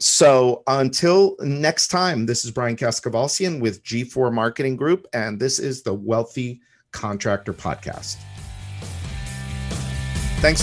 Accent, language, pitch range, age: American, English, 105-135 Hz, 50-69